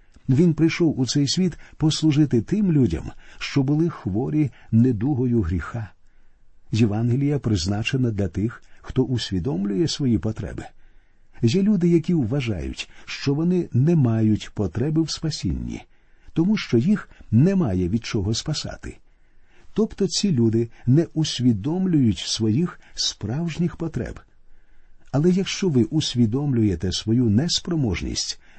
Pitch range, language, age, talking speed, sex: 110-150 Hz, Ukrainian, 50-69, 110 wpm, male